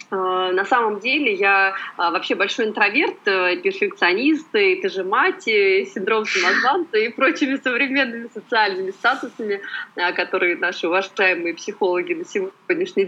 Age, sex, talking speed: 30-49, female, 115 wpm